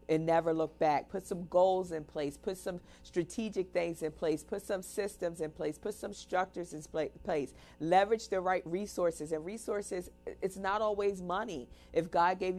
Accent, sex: American, female